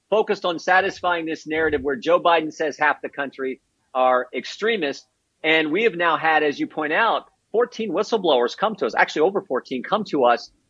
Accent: American